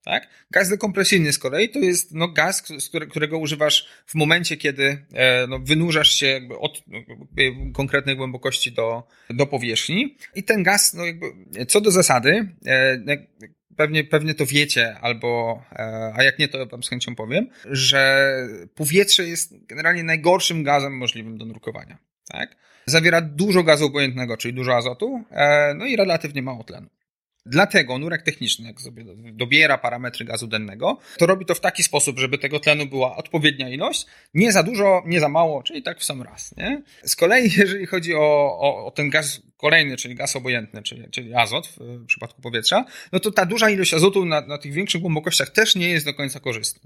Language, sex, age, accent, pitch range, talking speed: Polish, male, 30-49, native, 130-180 Hz, 185 wpm